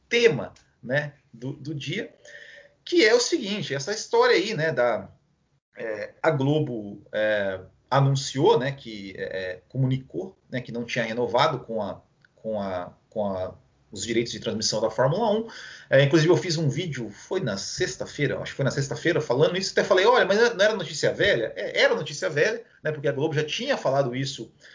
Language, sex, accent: Portuguese, male, Brazilian